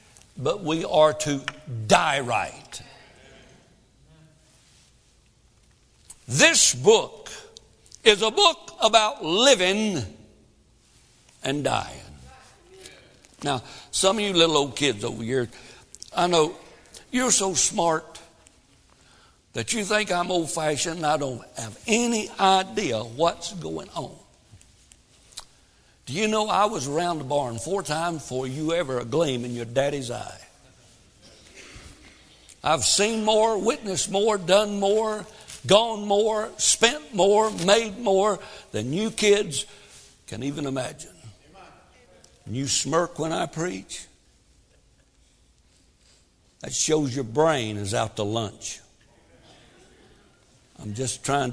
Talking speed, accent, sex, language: 115 wpm, American, male, English